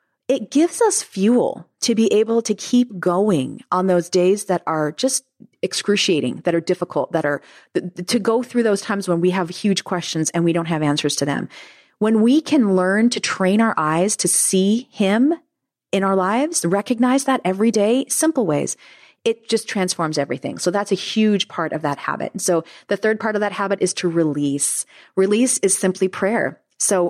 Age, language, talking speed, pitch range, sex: 30-49, English, 190 wpm, 170-225 Hz, female